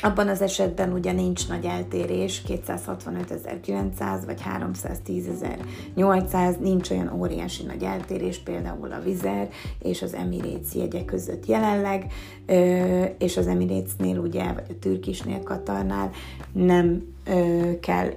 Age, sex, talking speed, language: 30-49, female, 110 wpm, Hungarian